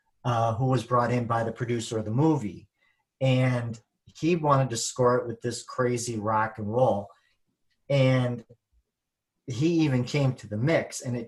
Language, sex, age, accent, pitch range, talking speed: English, male, 50-69, American, 110-135 Hz, 170 wpm